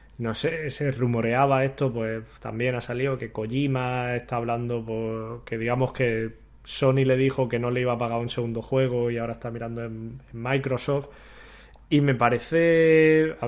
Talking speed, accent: 180 wpm, Spanish